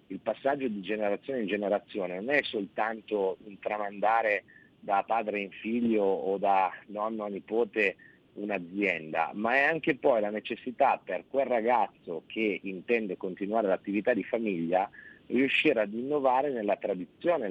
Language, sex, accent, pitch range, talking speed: Italian, male, native, 100-125 Hz, 140 wpm